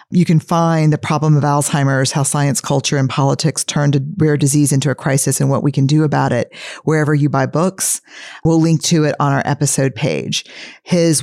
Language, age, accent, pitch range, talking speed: English, 40-59, American, 145-165 Hz, 210 wpm